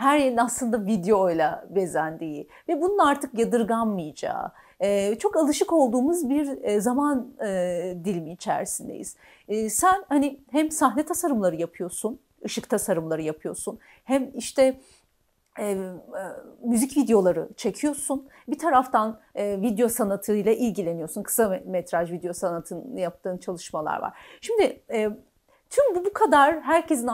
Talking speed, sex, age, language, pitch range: 110 wpm, female, 40-59, Turkish, 195-295 Hz